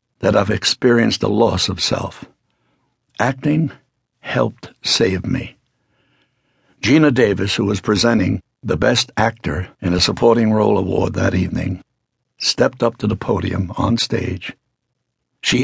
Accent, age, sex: American, 60-79, male